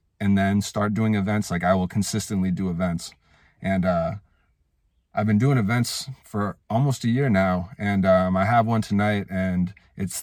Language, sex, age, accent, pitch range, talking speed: English, male, 30-49, American, 95-110 Hz, 175 wpm